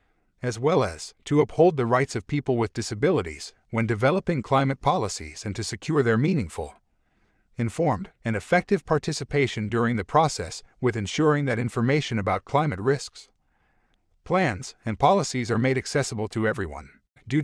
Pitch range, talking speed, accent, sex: 110-140 Hz, 150 wpm, American, male